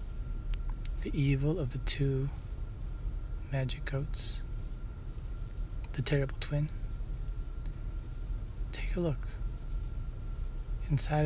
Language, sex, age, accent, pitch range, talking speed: English, male, 40-59, American, 105-150 Hz, 75 wpm